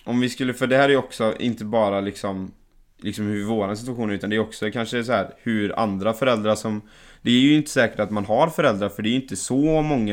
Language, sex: Swedish, male